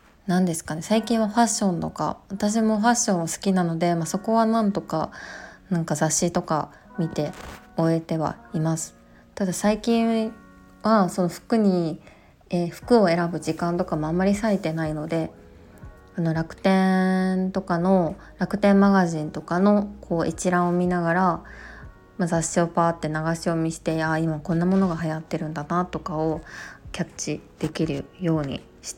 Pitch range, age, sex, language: 160-195 Hz, 20-39, female, Japanese